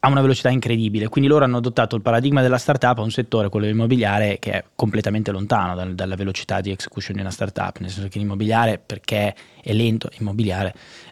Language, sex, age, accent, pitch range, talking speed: Italian, male, 20-39, native, 105-135 Hz, 205 wpm